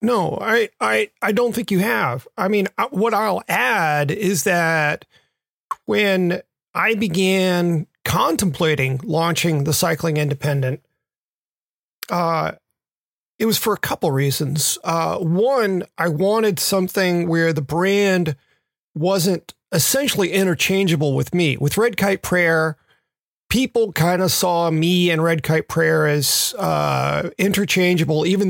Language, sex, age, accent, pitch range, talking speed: English, male, 40-59, American, 155-190 Hz, 130 wpm